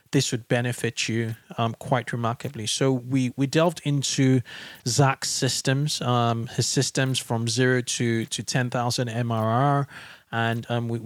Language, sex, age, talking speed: English, male, 20-39, 145 wpm